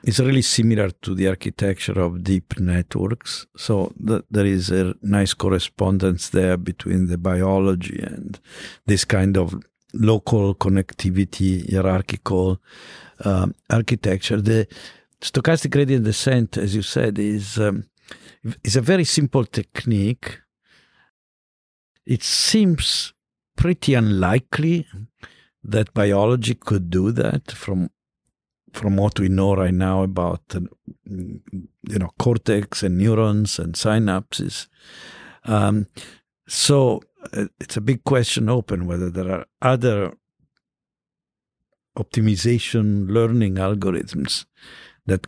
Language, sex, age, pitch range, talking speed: English, male, 50-69, 95-115 Hz, 110 wpm